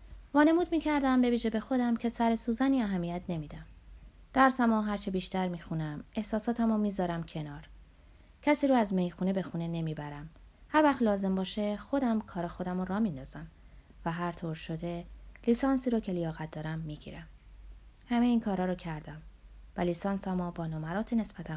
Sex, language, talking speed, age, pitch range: female, Persian, 160 wpm, 30-49, 165-235 Hz